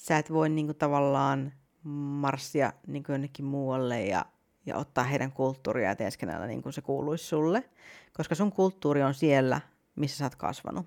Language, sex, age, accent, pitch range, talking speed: Finnish, female, 30-49, native, 140-180 Hz, 170 wpm